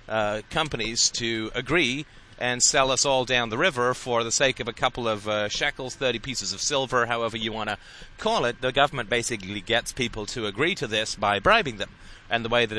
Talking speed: 215 wpm